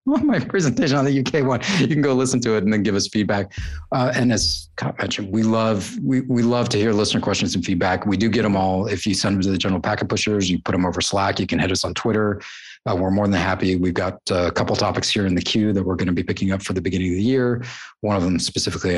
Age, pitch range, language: 30-49, 90-115 Hz, English